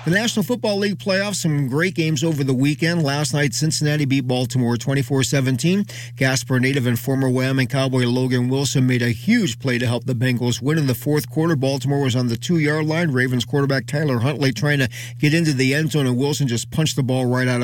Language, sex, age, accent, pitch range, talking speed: English, male, 40-59, American, 125-150 Hz, 215 wpm